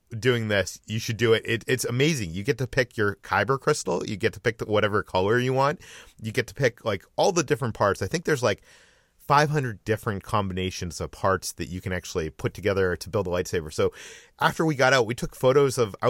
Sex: male